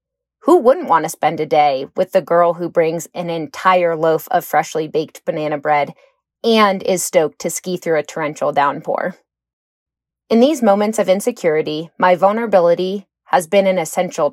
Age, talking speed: 30-49, 170 wpm